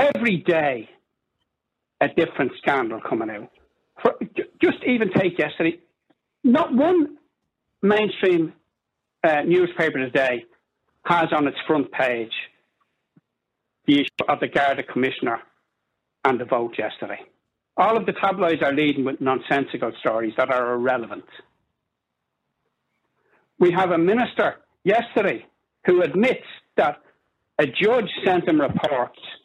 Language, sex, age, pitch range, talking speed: English, male, 60-79, 150-240 Hz, 115 wpm